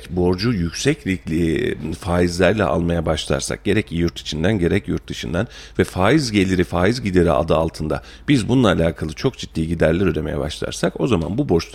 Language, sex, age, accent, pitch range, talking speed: Turkish, male, 40-59, native, 85-100 Hz, 155 wpm